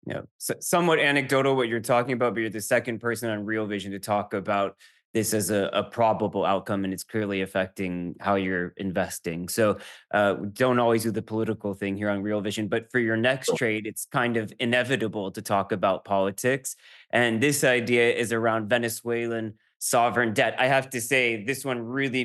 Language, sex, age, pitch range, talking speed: English, male, 20-39, 105-125 Hz, 190 wpm